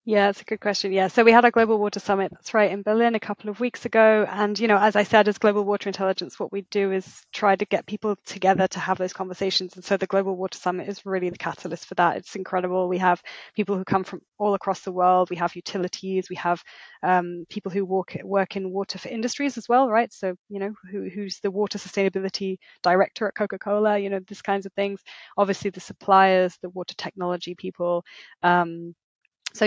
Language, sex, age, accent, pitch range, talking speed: English, female, 20-39, British, 185-210 Hz, 230 wpm